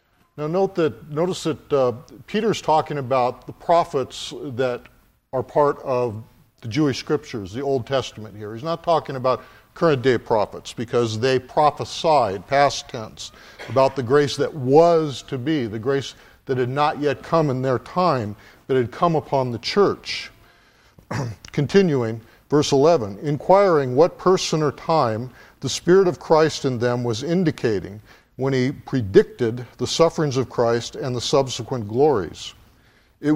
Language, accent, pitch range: English, American, 120-155 Hz